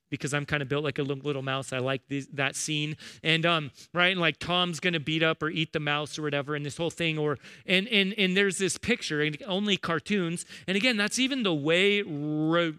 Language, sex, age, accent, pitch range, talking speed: English, male, 30-49, American, 145-190 Hz, 240 wpm